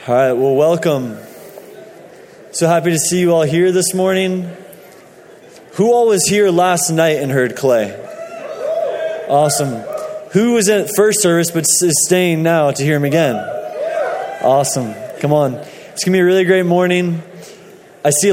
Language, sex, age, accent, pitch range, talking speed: English, male, 20-39, American, 155-200 Hz, 160 wpm